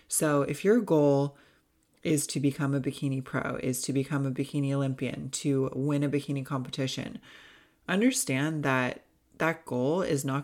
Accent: American